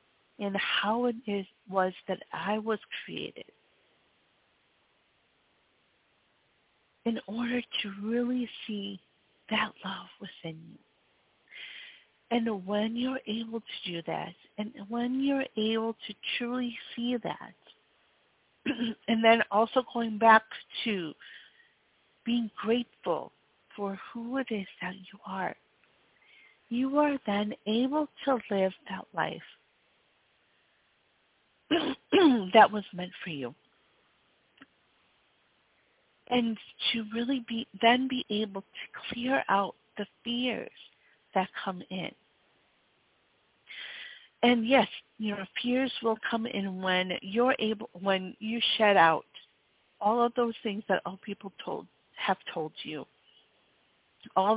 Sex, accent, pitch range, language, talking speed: female, American, 200-245 Hz, English, 115 wpm